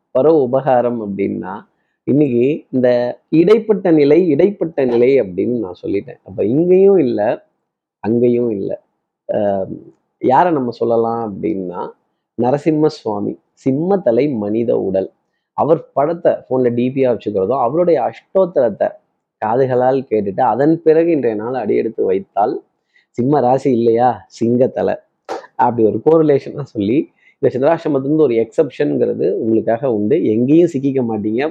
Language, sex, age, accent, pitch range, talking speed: Tamil, male, 30-49, native, 115-170 Hz, 110 wpm